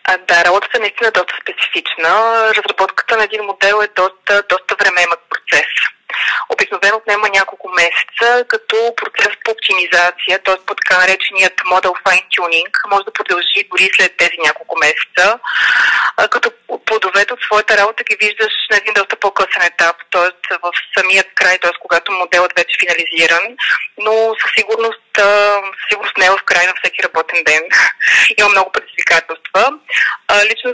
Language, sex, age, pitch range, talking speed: Bulgarian, female, 20-39, 185-225 Hz, 150 wpm